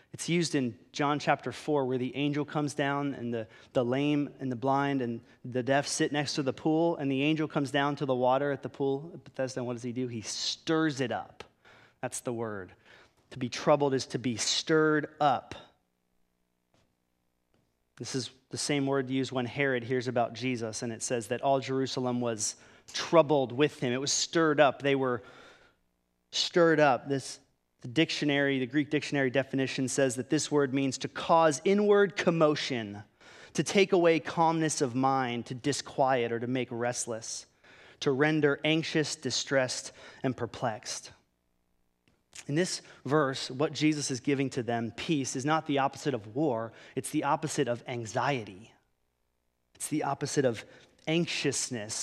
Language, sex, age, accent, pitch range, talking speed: English, male, 30-49, American, 125-150 Hz, 170 wpm